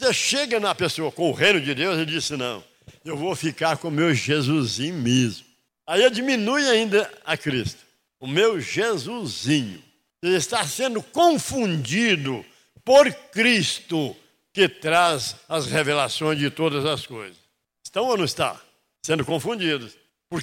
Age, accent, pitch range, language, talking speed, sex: 60-79, Brazilian, 155-230 Hz, Portuguese, 145 wpm, male